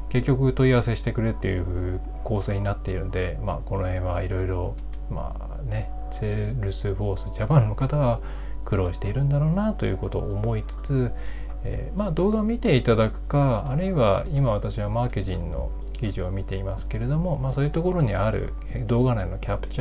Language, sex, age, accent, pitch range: Japanese, male, 20-39, native, 100-145 Hz